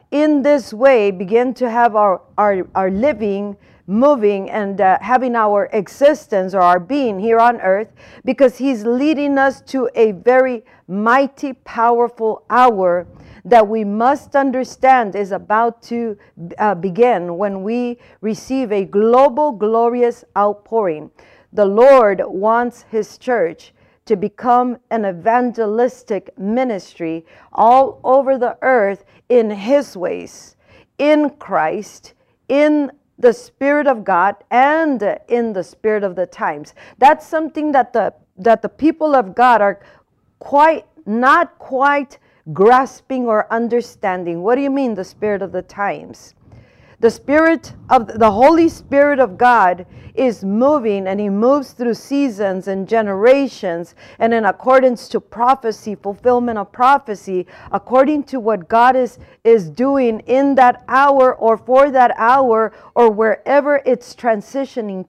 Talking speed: 135 wpm